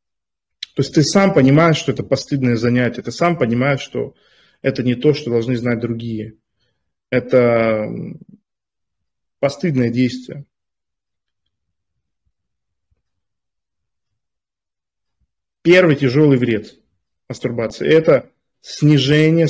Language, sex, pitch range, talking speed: Russian, male, 115-145 Hz, 90 wpm